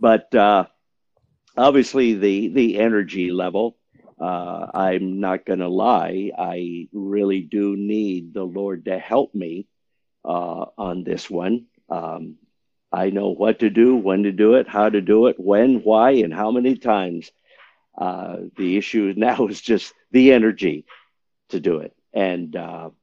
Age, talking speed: 50-69, 155 wpm